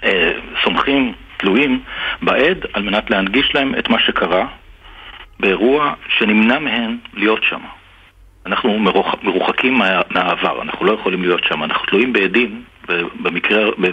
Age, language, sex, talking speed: 50-69, Hebrew, male, 125 wpm